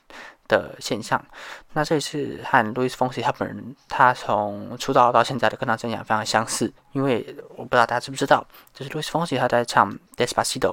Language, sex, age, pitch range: Chinese, male, 20-39, 115-135 Hz